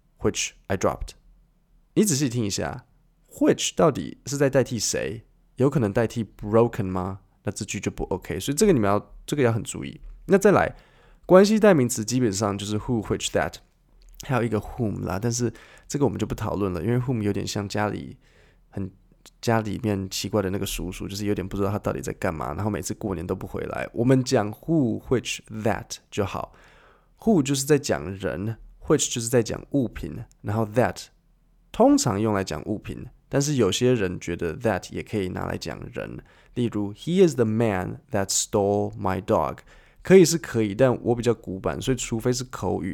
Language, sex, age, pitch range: Chinese, male, 20-39, 100-130 Hz